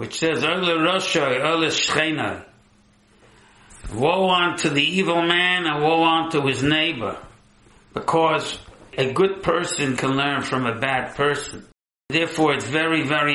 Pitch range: 125-160 Hz